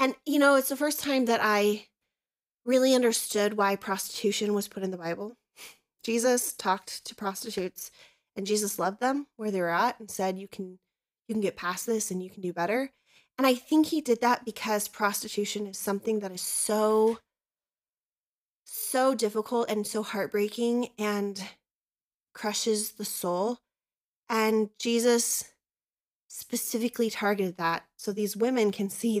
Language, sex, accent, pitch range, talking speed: English, female, American, 195-235 Hz, 155 wpm